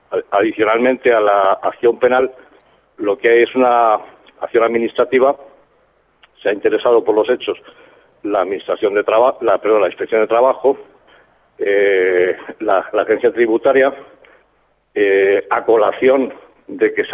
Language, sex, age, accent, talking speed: Spanish, male, 50-69, Spanish, 135 wpm